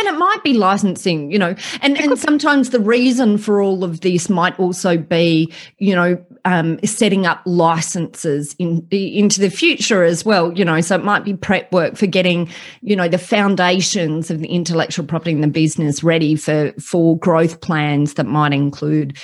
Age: 30-49